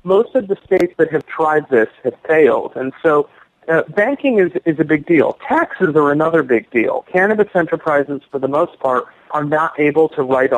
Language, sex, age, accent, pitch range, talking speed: English, male, 40-59, American, 135-175 Hz, 200 wpm